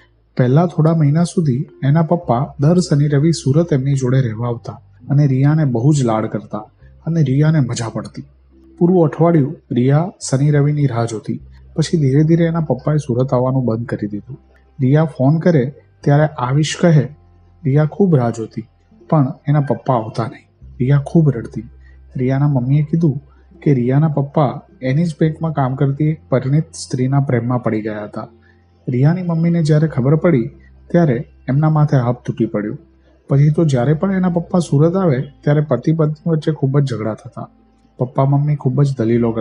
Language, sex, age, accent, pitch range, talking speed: Gujarati, male, 30-49, native, 120-155 Hz, 105 wpm